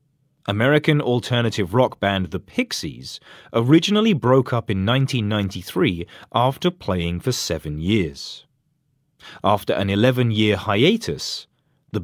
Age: 30-49